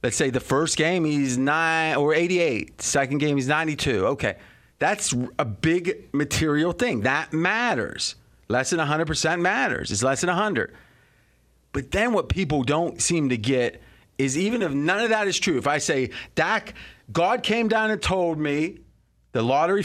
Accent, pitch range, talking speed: American, 130-175 Hz, 170 wpm